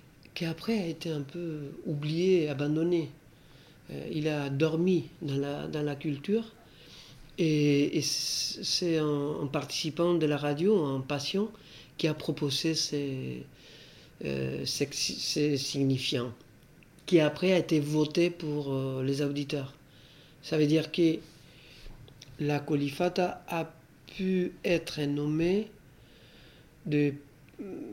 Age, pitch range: 50-69, 145-170 Hz